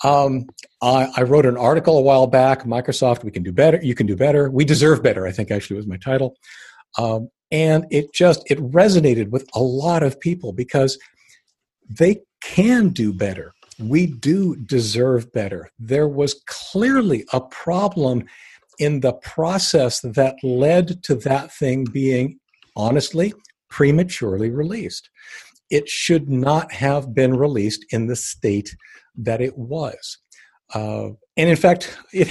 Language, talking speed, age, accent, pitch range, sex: English, 150 wpm, 50-69, American, 115-150 Hz, male